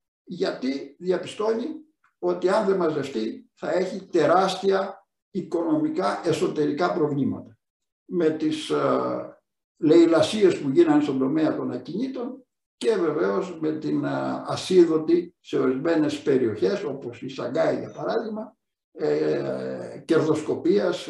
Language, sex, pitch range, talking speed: Greek, male, 155-255 Hz, 105 wpm